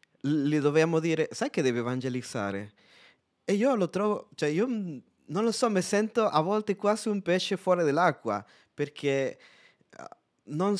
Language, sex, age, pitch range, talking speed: Italian, male, 20-39, 125-170 Hz, 150 wpm